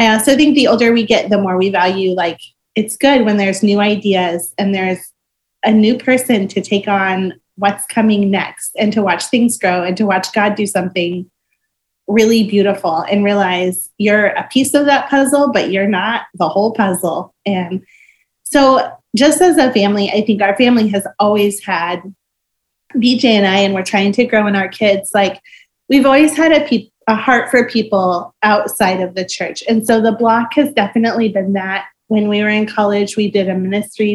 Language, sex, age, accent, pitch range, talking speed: English, female, 30-49, American, 190-230 Hz, 195 wpm